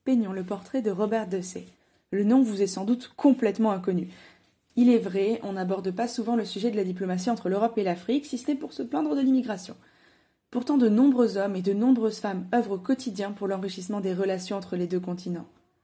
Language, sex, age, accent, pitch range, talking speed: French, female, 20-39, French, 190-240 Hz, 215 wpm